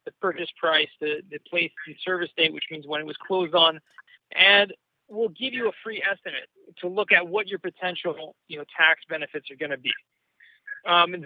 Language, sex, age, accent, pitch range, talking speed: English, male, 40-59, American, 165-210 Hz, 205 wpm